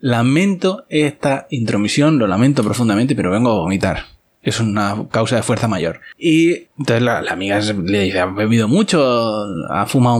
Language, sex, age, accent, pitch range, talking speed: Spanish, male, 20-39, Spanish, 110-150 Hz, 165 wpm